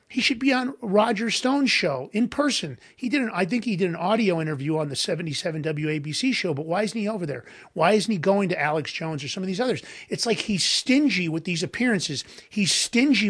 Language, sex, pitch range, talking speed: English, male, 165-230 Hz, 225 wpm